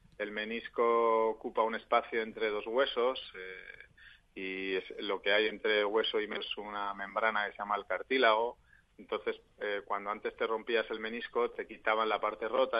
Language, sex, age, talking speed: Spanish, male, 30-49, 180 wpm